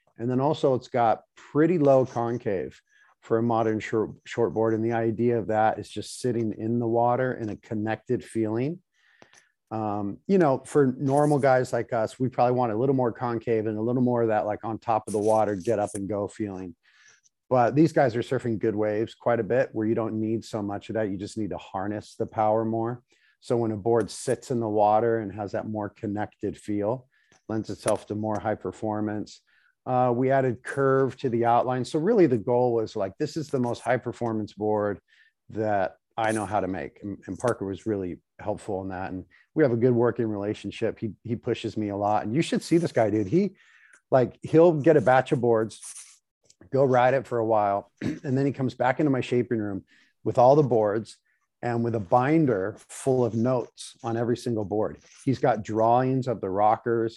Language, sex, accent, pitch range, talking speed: English, male, American, 105-125 Hz, 215 wpm